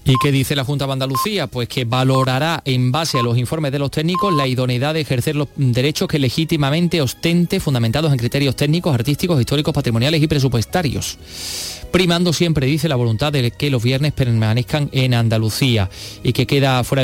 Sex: male